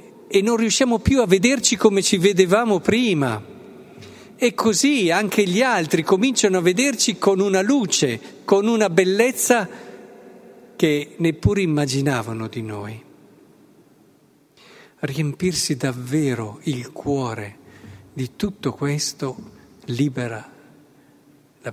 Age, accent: 50-69, native